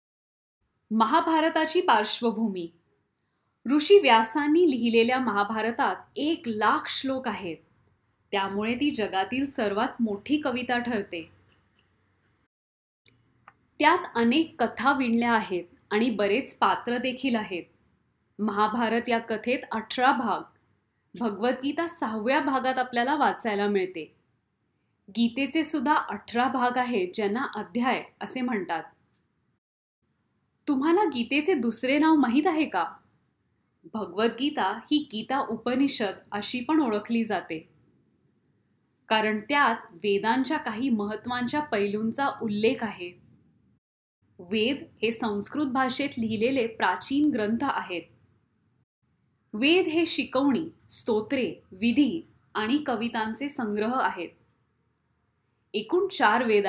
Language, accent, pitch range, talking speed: Marathi, native, 195-270 Hz, 95 wpm